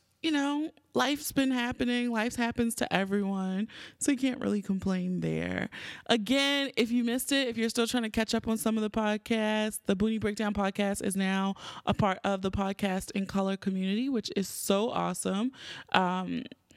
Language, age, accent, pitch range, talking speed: English, 20-39, American, 185-255 Hz, 185 wpm